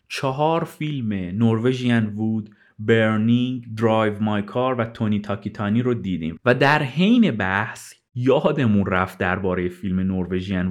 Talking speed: 120 wpm